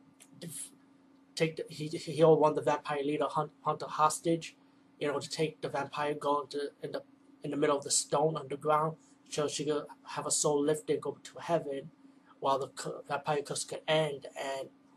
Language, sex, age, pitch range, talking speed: English, male, 30-49, 140-180 Hz, 195 wpm